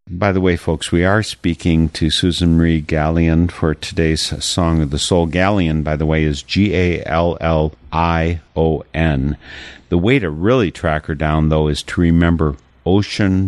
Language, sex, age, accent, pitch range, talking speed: English, male, 50-69, American, 75-90 Hz, 155 wpm